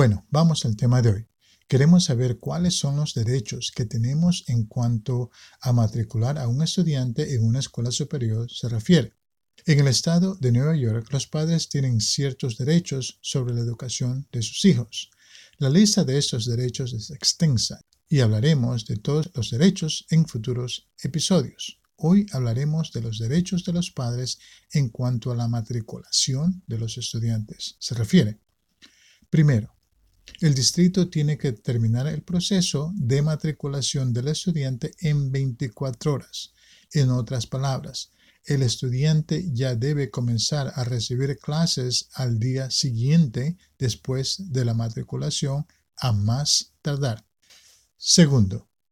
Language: Spanish